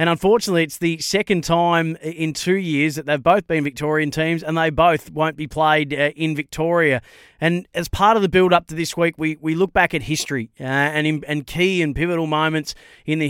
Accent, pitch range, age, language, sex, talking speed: Australian, 150-170 Hz, 30-49, English, male, 220 wpm